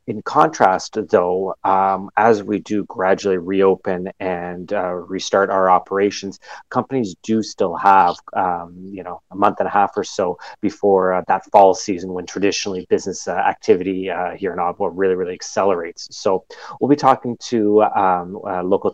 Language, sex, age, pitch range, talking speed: English, male, 30-49, 95-105 Hz, 170 wpm